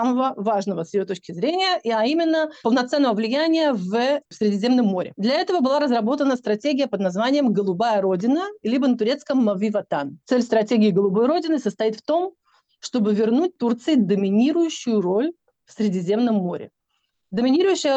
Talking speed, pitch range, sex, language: 145 wpm, 210-290 Hz, female, Russian